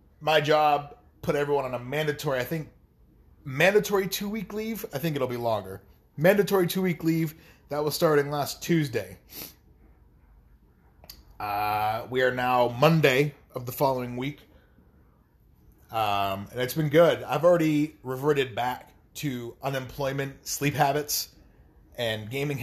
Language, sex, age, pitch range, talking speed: English, male, 30-49, 110-150 Hz, 130 wpm